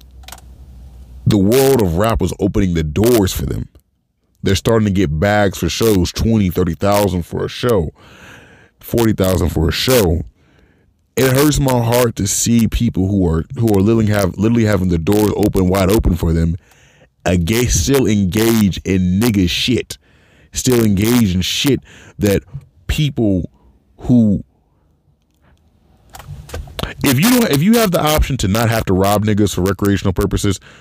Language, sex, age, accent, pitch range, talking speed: English, male, 30-49, American, 90-135 Hz, 150 wpm